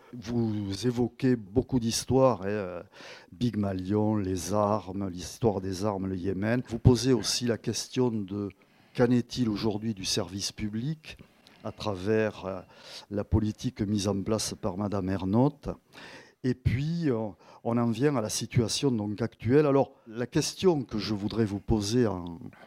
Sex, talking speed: male, 145 wpm